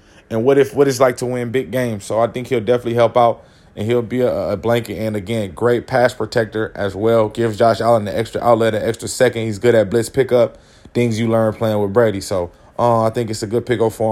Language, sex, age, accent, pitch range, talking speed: English, male, 20-39, American, 105-130 Hz, 250 wpm